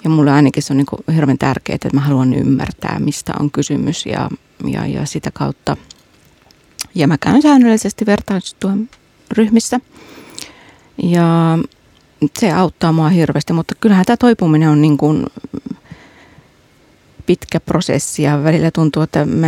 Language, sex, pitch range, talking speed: Finnish, female, 145-175 Hz, 130 wpm